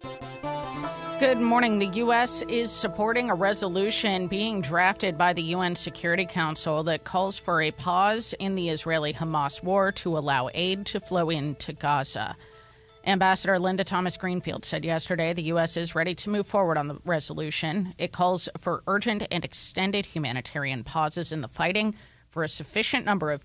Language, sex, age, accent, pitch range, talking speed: English, female, 30-49, American, 155-190 Hz, 165 wpm